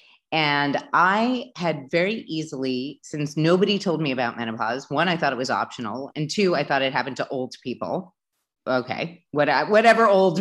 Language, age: English, 30-49